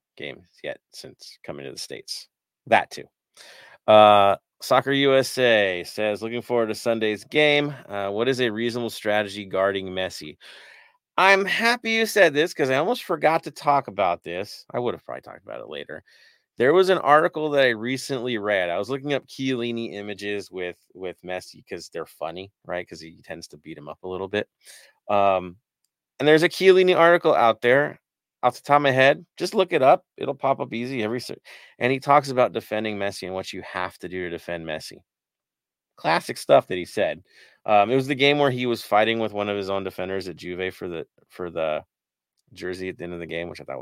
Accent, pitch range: American, 95-140 Hz